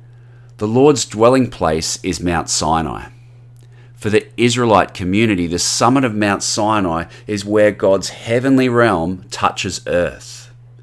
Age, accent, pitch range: 40-59, Australian, 95-120 Hz